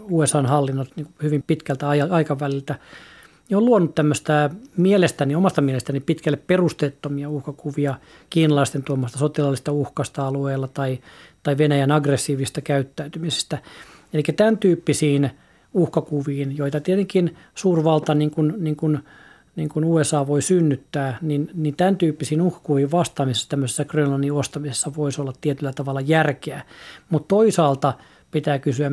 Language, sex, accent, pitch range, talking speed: Finnish, male, native, 140-160 Hz, 125 wpm